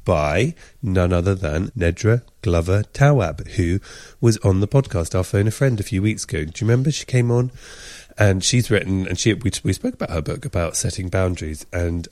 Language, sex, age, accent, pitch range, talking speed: English, male, 30-49, British, 85-120 Hz, 200 wpm